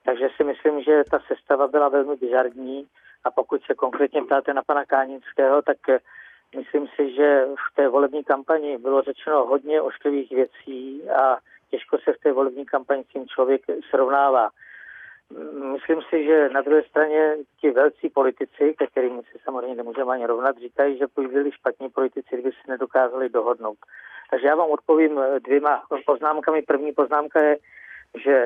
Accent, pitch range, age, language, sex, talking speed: native, 135-150 Hz, 40-59, Czech, male, 160 wpm